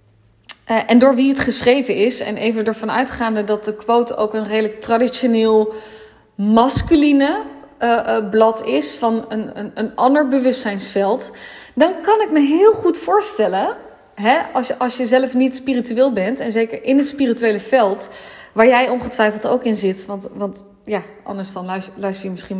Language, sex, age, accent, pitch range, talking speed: Dutch, female, 20-39, Dutch, 215-275 Hz, 165 wpm